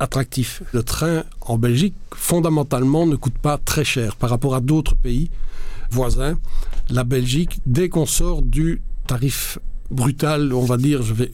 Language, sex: French, male